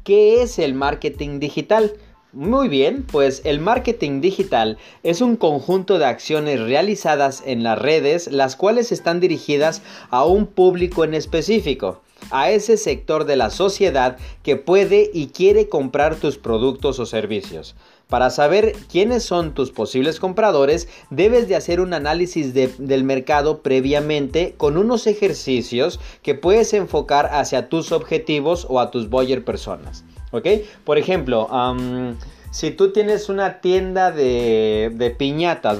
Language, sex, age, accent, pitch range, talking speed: Spanish, male, 40-59, Mexican, 135-190 Hz, 140 wpm